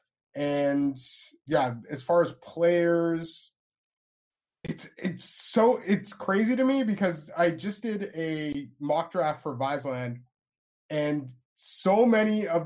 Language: English